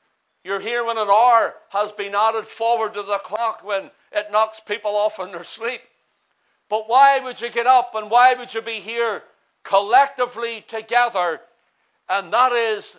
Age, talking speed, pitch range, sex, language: 60-79, 170 wpm, 190-235 Hz, male, English